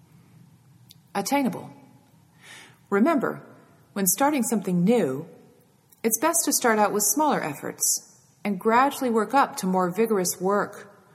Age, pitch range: 40-59, 155-230 Hz